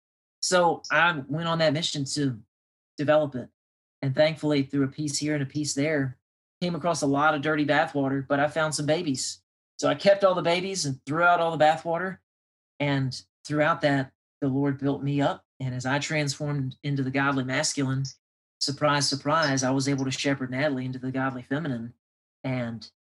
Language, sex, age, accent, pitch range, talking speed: English, male, 40-59, American, 130-155 Hz, 190 wpm